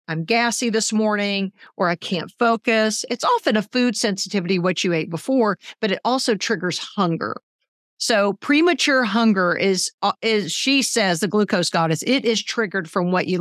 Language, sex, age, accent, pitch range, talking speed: English, female, 50-69, American, 170-215 Hz, 170 wpm